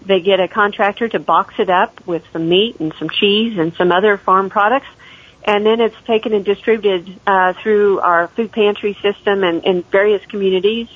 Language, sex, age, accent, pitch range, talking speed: English, female, 50-69, American, 180-215 Hz, 190 wpm